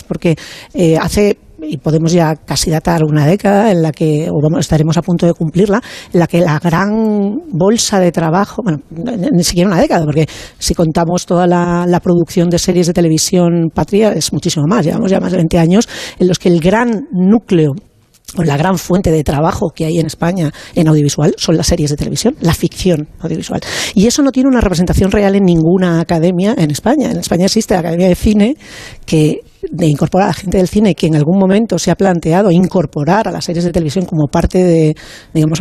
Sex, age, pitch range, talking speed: female, 40-59, 165-205 Hz, 210 wpm